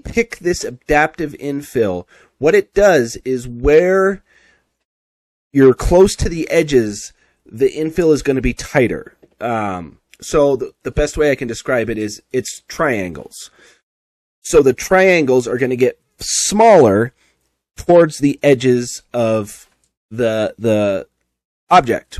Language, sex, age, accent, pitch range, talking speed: English, male, 30-49, American, 110-145 Hz, 130 wpm